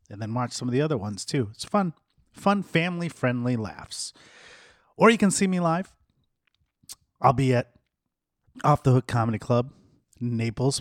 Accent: American